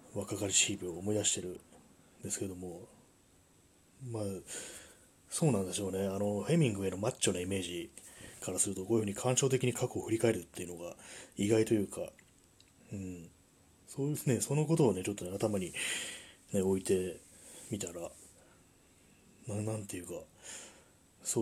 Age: 30-49